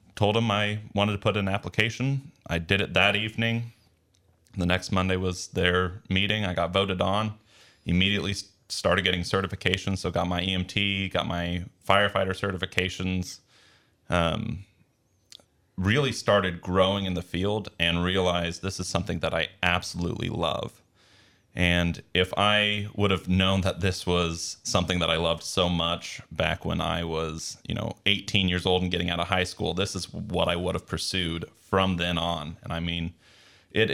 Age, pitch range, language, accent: 30-49, 85-100 Hz, English, American